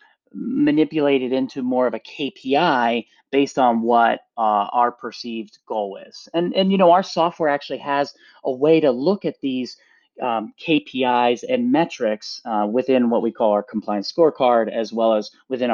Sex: male